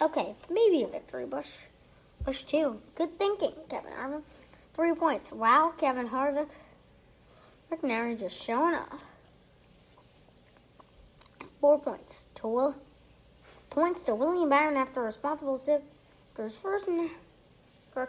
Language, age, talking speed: English, 30-49, 115 wpm